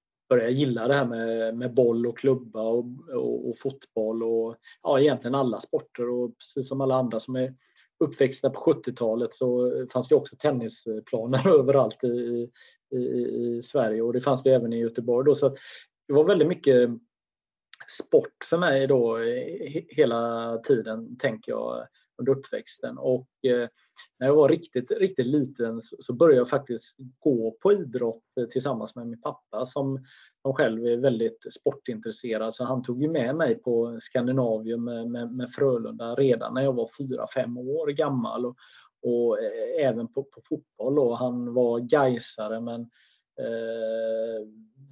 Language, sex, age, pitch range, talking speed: Swedish, male, 30-49, 115-135 Hz, 155 wpm